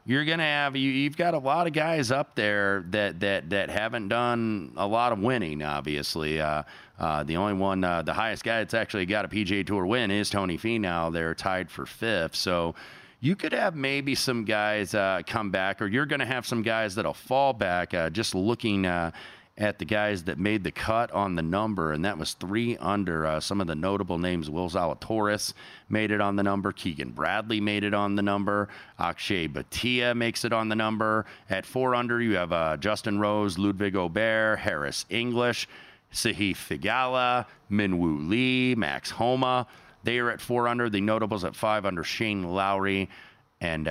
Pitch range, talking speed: 90-115 Hz, 200 wpm